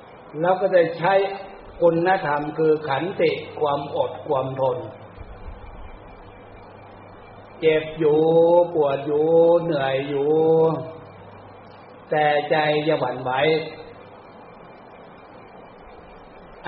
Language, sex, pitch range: Thai, male, 100-170 Hz